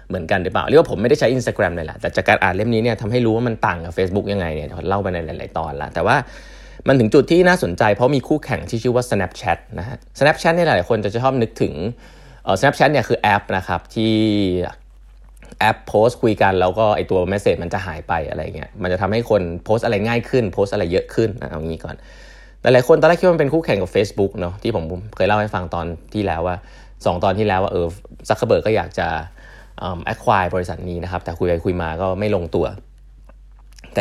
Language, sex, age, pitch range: Thai, male, 20-39, 90-125 Hz